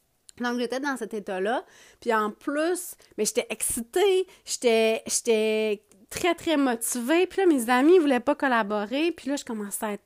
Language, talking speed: French, 180 wpm